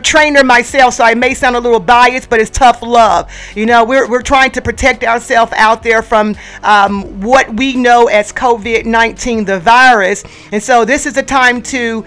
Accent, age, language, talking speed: American, 40-59, English, 200 wpm